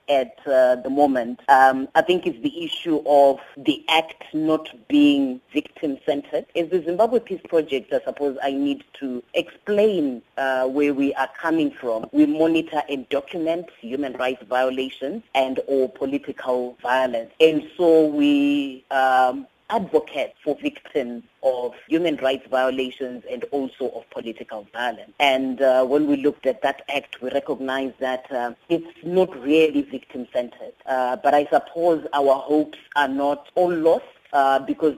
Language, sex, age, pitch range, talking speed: English, female, 30-49, 130-165 Hz, 150 wpm